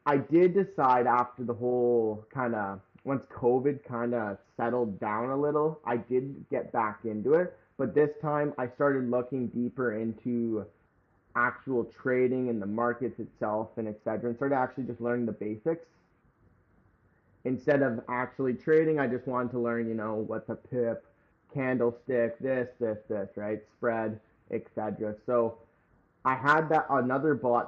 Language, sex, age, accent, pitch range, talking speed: English, male, 20-39, American, 115-140 Hz, 160 wpm